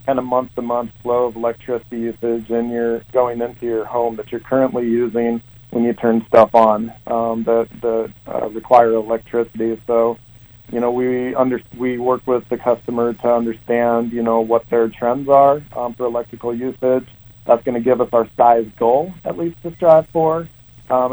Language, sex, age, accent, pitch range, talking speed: English, male, 40-59, American, 115-125 Hz, 180 wpm